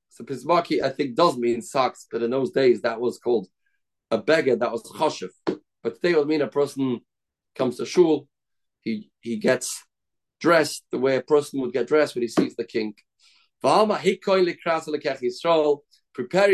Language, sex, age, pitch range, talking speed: English, male, 40-59, 150-200 Hz, 165 wpm